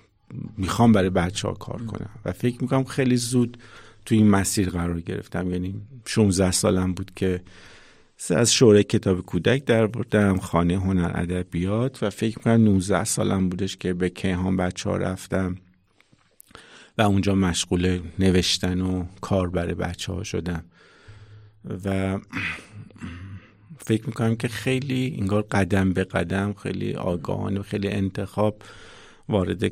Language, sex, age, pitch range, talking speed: Persian, male, 50-69, 90-105 Hz, 135 wpm